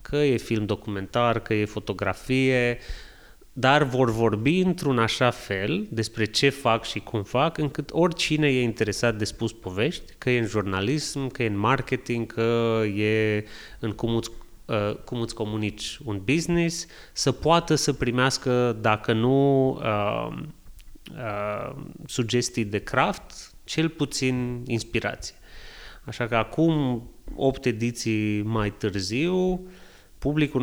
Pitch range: 105-135 Hz